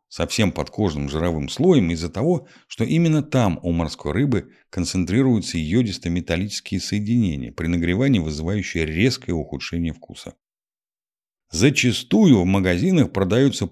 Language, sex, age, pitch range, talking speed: Russian, male, 50-69, 80-120 Hz, 110 wpm